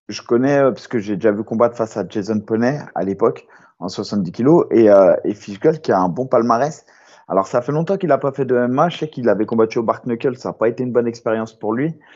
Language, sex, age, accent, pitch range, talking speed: French, male, 30-49, French, 105-135 Hz, 265 wpm